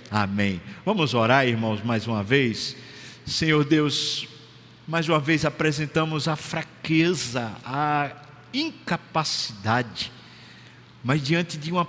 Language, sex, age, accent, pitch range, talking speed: Portuguese, male, 60-79, Brazilian, 120-155 Hz, 105 wpm